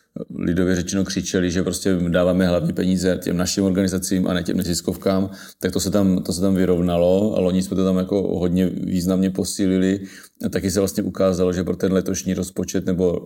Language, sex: Czech, male